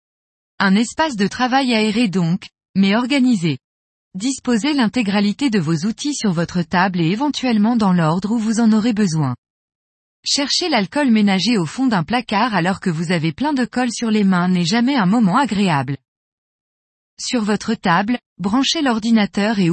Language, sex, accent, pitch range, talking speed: French, female, French, 180-245 Hz, 160 wpm